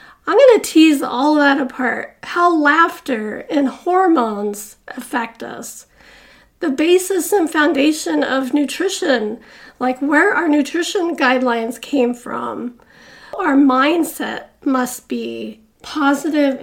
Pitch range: 265-320 Hz